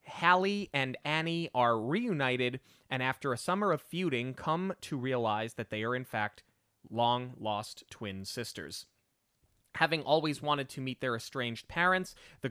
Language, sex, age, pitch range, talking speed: English, male, 30-49, 110-145 Hz, 155 wpm